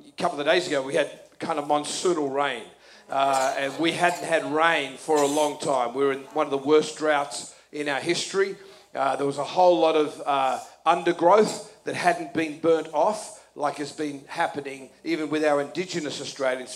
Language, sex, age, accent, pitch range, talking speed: English, male, 40-59, Australian, 140-165 Hz, 195 wpm